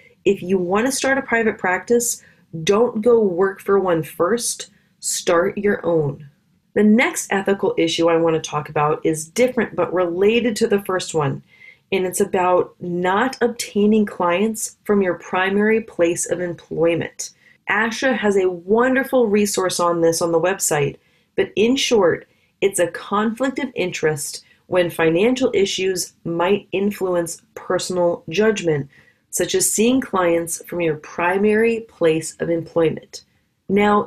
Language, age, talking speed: English, 30-49, 140 wpm